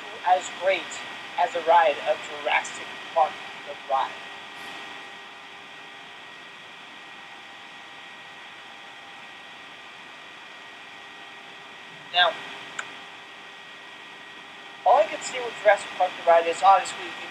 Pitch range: 135-205 Hz